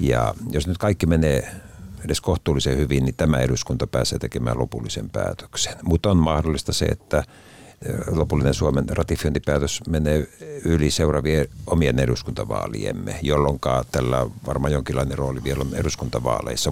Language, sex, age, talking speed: Finnish, male, 60-79, 130 wpm